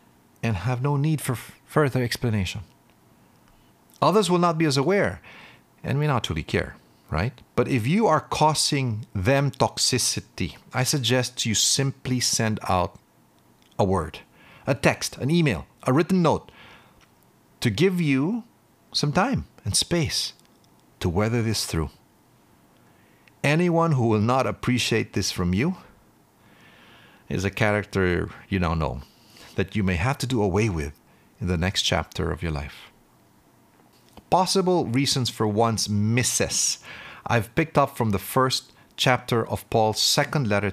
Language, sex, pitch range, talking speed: English, male, 100-140 Hz, 145 wpm